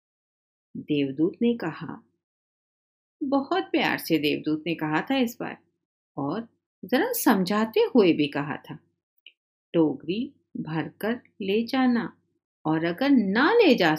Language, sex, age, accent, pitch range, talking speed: Hindi, female, 50-69, native, 165-270 Hz, 120 wpm